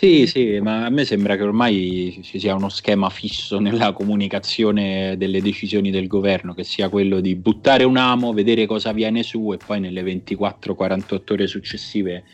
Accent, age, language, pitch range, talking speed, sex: native, 30-49, Italian, 95-120 Hz, 175 wpm, male